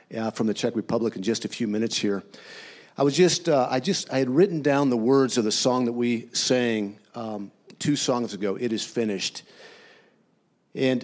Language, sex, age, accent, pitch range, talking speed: English, male, 50-69, American, 115-150 Hz, 200 wpm